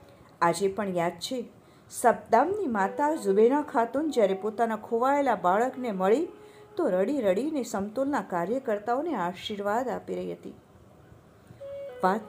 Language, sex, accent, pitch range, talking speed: Hindi, female, native, 185-280 Hz, 120 wpm